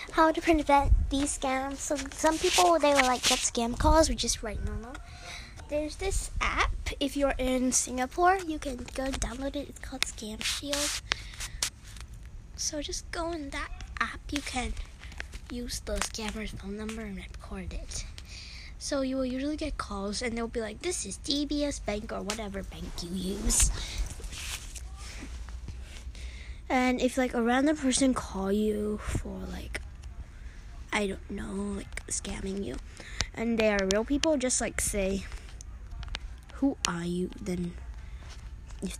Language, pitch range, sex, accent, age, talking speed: English, 170-260 Hz, female, American, 10-29, 150 wpm